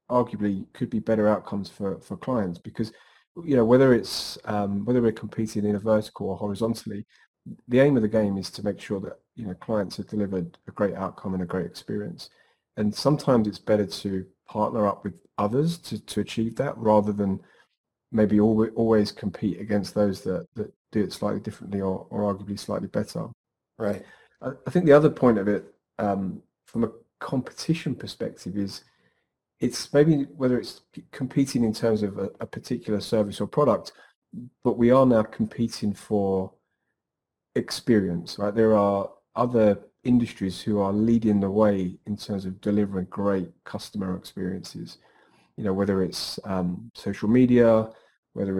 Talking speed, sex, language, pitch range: 170 wpm, male, English, 100-115 Hz